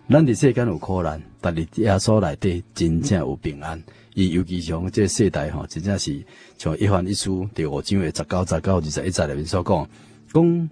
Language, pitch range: Chinese, 85-115 Hz